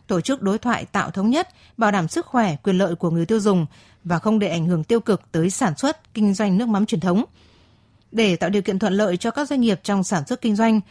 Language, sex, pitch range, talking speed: Vietnamese, female, 190-235 Hz, 265 wpm